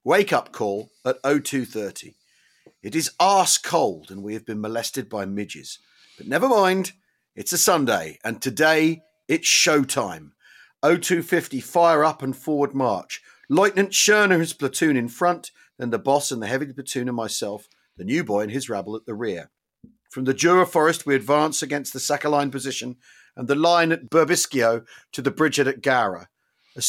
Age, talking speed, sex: 40-59, 165 wpm, male